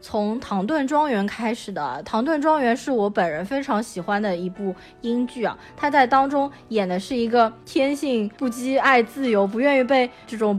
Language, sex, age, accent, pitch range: Chinese, female, 20-39, native, 200-275 Hz